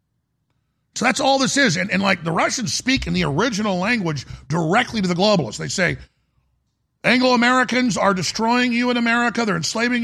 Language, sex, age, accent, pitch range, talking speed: English, male, 50-69, American, 170-240 Hz, 175 wpm